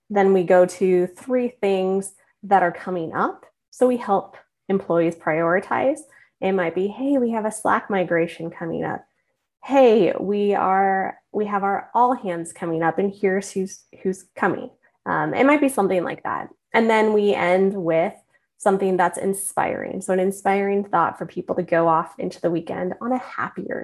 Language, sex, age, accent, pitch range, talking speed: English, female, 20-39, American, 180-220 Hz, 180 wpm